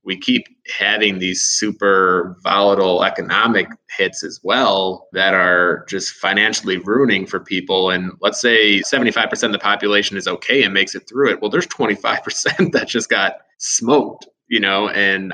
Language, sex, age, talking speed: English, male, 20-39, 160 wpm